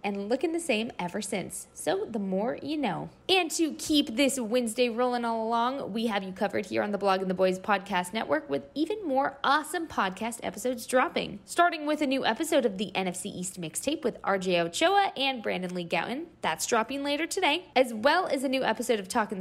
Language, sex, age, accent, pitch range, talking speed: English, female, 20-39, American, 195-295 Hz, 210 wpm